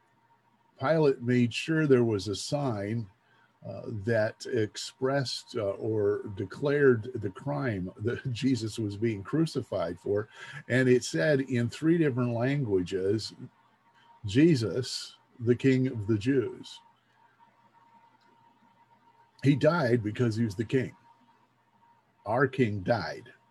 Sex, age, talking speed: male, 50-69, 110 wpm